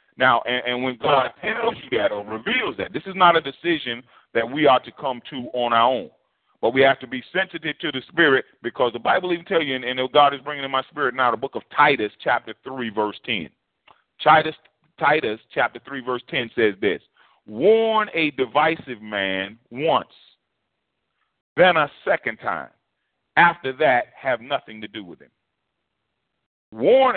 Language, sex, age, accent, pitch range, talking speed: English, male, 40-59, American, 120-160 Hz, 185 wpm